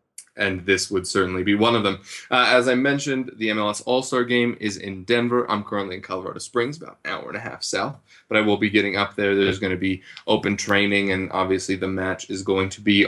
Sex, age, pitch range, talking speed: male, 20-39, 100-120 Hz, 240 wpm